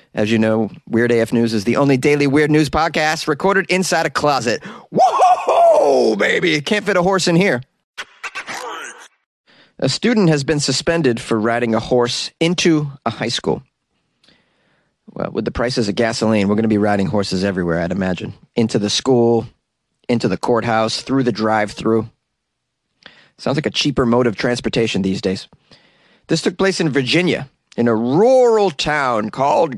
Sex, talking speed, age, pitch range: male, 165 wpm, 30-49, 115-165 Hz